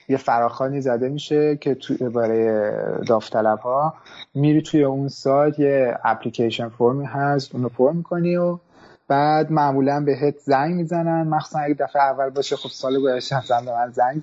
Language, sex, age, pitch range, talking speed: Persian, male, 30-49, 125-150 Hz, 150 wpm